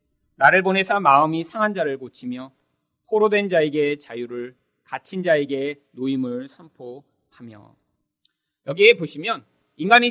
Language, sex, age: Korean, male, 40-59